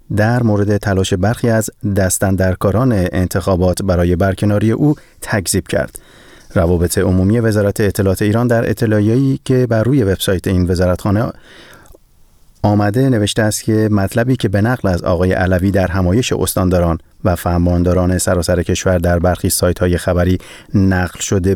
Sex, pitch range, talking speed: male, 90-110 Hz, 140 wpm